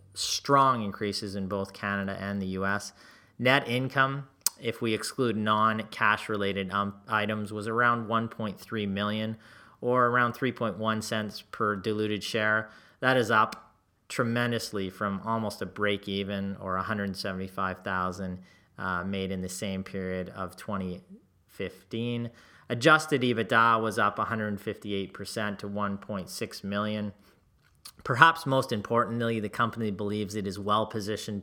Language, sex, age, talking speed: English, male, 30-49, 120 wpm